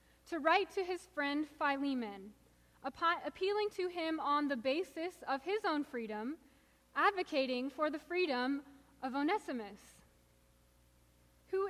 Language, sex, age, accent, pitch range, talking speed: English, female, 20-39, American, 240-310 Hz, 125 wpm